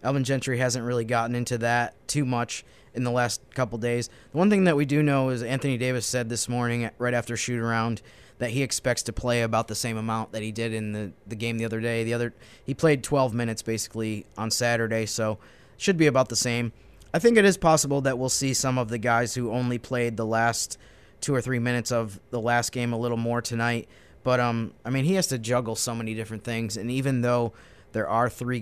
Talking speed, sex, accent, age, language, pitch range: 235 wpm, male, American, 20-39, English, 110-125 Hz